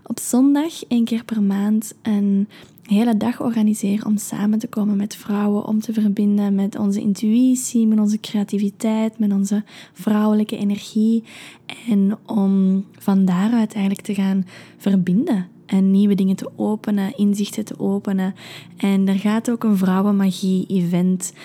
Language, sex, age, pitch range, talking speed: Dutch, female, 20-39, 195-220 Hz, 145 wpm